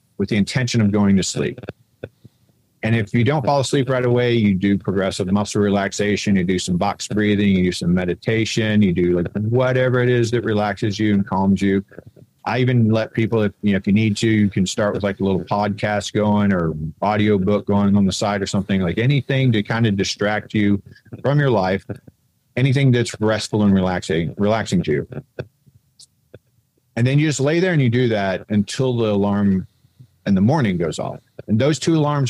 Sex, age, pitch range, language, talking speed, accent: male, 40-59, 95-115 Hz, English, 200 wpm, American